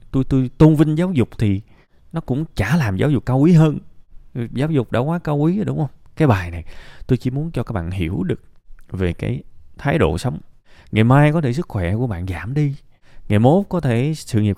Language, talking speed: Vietnamese, 235 wpm